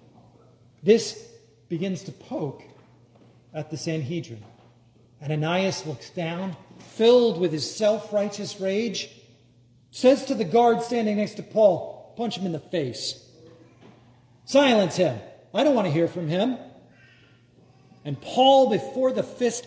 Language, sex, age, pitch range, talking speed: English, male, 40-59, 135-210 Hz, 130 wpm